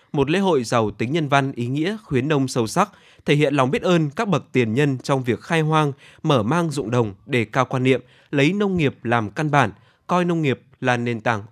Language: Vietnamese